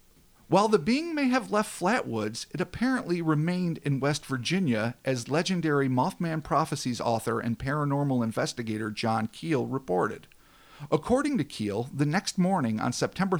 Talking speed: 145 wpm